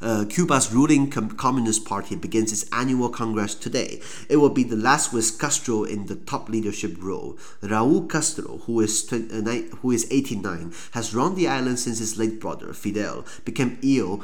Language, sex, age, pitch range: Chinese, male, 30-49, 105-135 Hz